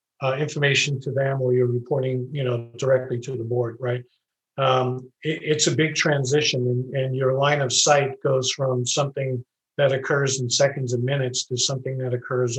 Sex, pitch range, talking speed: male, 125-145 Hz, 185 wpm